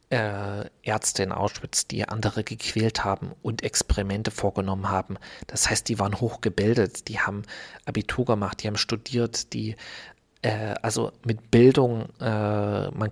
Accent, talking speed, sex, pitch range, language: German, 140 wpm, male, 100-120 Hz, German